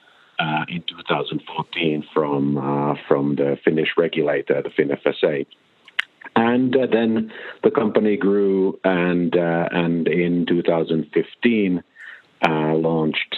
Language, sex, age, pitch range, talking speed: German, male, 50-69, 75-90 Hz, 110 wpm